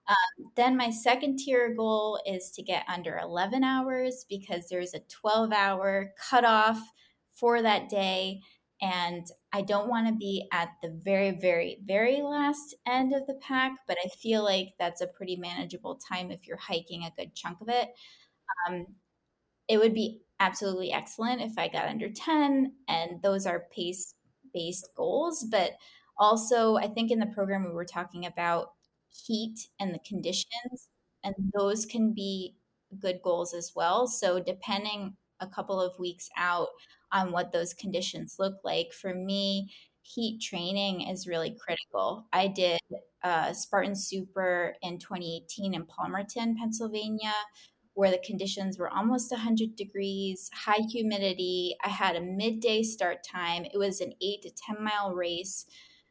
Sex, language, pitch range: female, English, 180-225 Hz